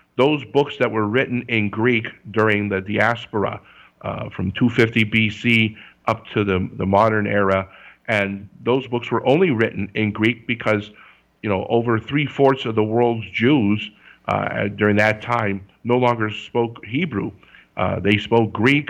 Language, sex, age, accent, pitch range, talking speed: English, male, 50-69, American, 105-120 Hz, 155 wpm